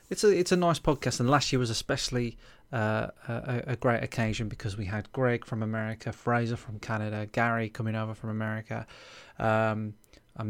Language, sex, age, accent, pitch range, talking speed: English, male, 20-39, British, 110-140 Hz, 185 wpm